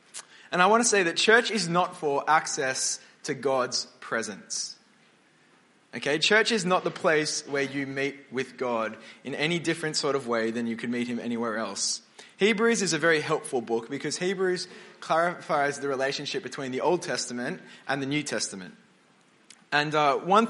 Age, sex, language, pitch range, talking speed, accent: 20-39, male, English, 135-175 Hz, 175 wpm, Australian